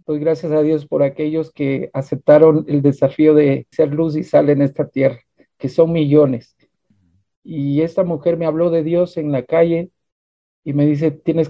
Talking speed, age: 185 wpm, 50-69